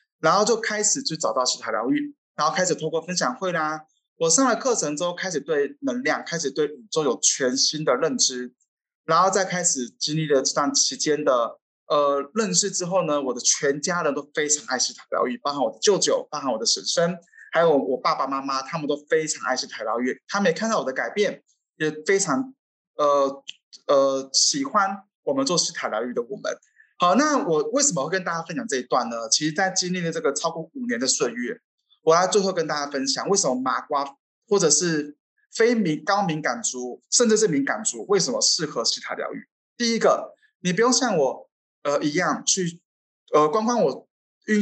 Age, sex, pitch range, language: 20-39, male, 150-225 Hz, Chinese